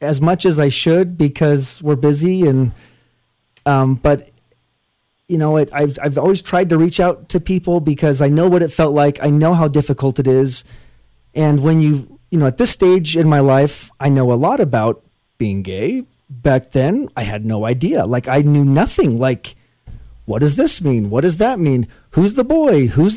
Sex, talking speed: male, 195 wpm